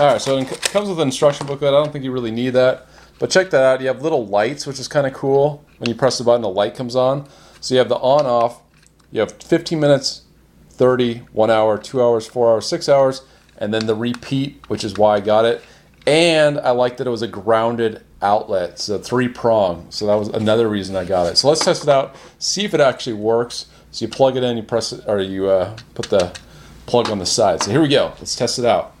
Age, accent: 30-49, American